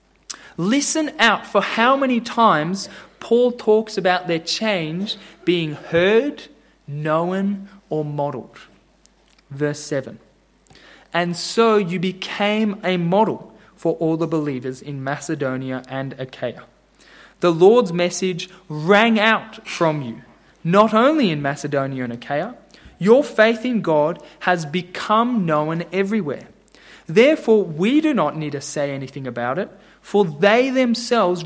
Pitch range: 155-225 Hz